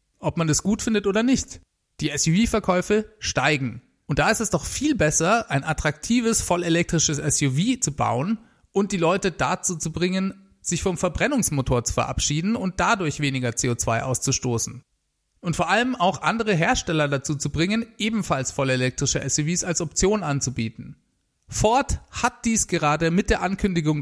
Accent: German